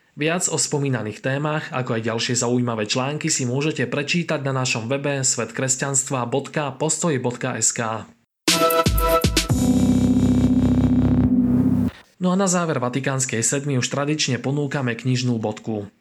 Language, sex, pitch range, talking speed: Slovak, male, 125-160 Hz, 100 wpm